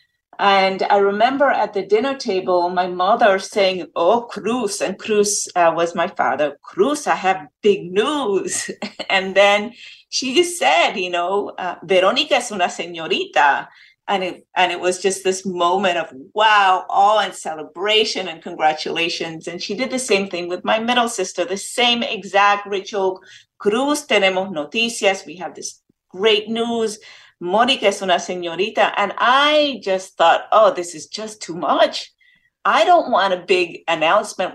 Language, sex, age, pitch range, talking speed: English, female, 50-69, 180-220 Hz, 160 wpm